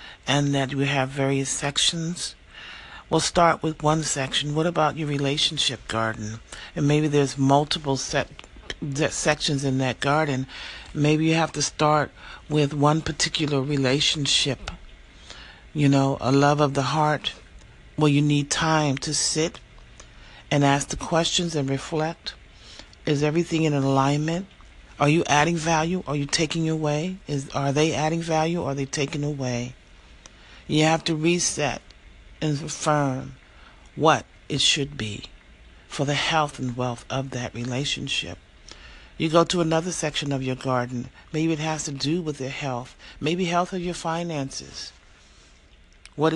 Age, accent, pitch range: 40-59, American, 135-160 Hz